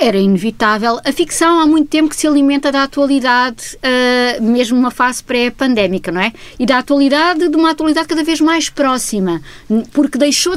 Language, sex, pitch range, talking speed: Portuguese, female, 235-295 Hz, 170 wpm